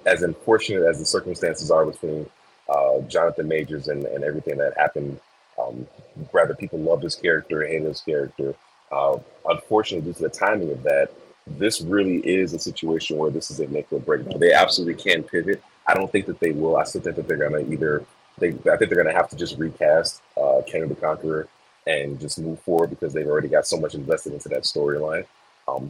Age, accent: 30-49, American